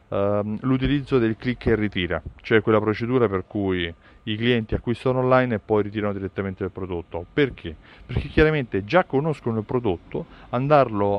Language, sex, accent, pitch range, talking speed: Italian, male, native, 100-130 Hz, 150 wpm